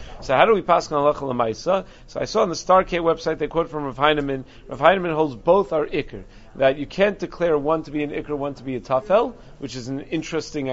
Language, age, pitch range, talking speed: English, 40-59, 145-185 Hz, 240 wpm